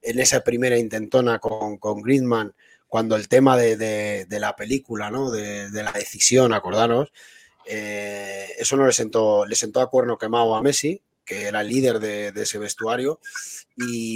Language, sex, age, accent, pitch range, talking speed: Spanish, male, 30-49, Spanish, 110-145 Hz, 180 wpm